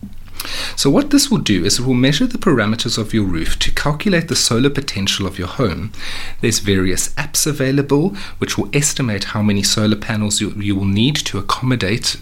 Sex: male